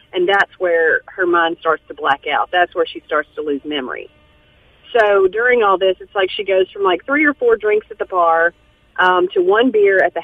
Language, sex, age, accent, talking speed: English, female, 40-59, American, 230 wpm